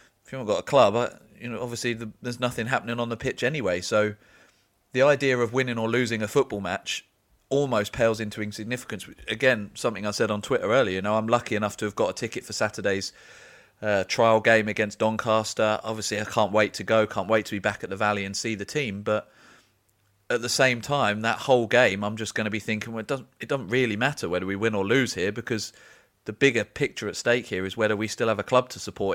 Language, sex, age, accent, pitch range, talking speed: English, male, 30-49, British, 105-115 Hz, 240 wpm